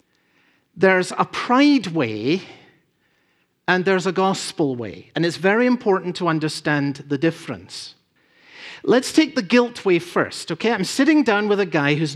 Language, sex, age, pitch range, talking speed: English, male, 50-69, 160-230 Hz, 155 wpm